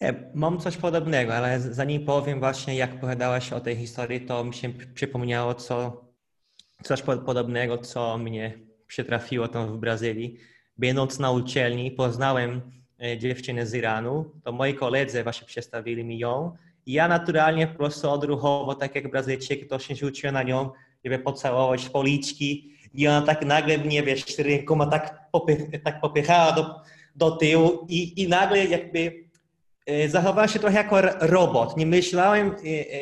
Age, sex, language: 20-39, male, Polish